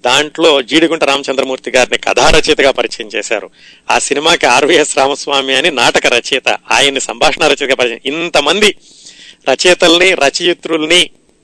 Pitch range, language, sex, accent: 130-150 Hz, Telugu, male, native